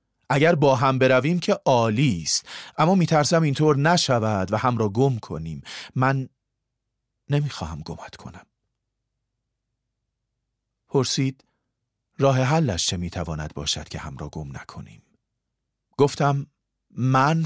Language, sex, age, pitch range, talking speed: Persian, male, 40-59, 110-135 Hz, 115 wpm